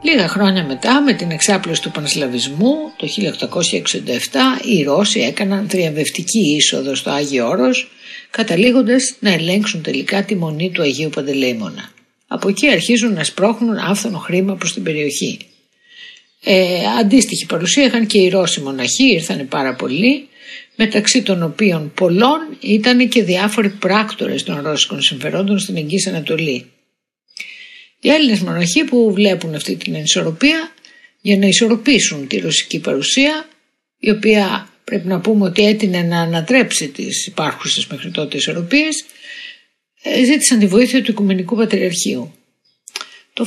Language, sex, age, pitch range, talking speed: Greek, female, 60-79, 180-260 Hz, 135 wpm